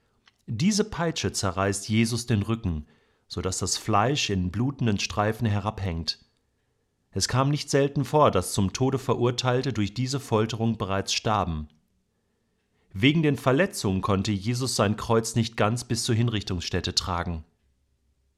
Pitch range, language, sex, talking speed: 100-135 Hz, German, male, 135 wpm